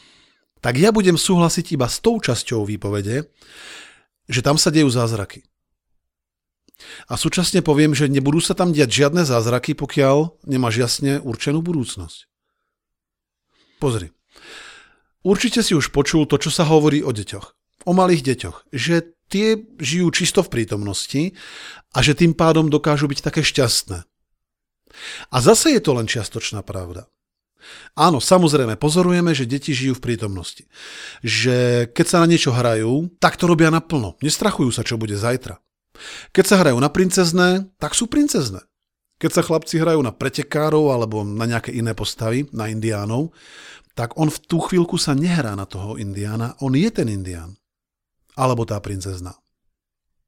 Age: 40-59